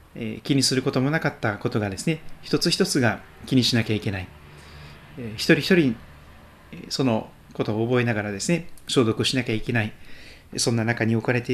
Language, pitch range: Japanese, 105-150 Hz